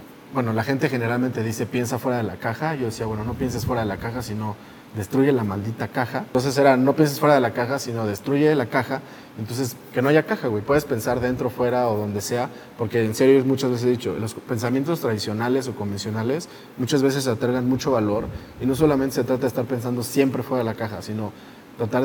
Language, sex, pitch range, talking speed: Spanish, male, 110-130 Hz, 220 wpm